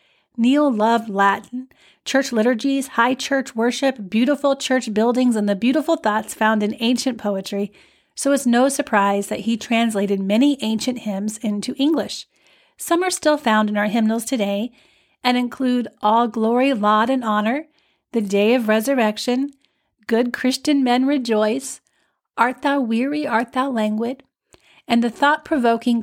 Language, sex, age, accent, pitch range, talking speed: English, female, 40-59, American, 215-260 Hz, 145 wpm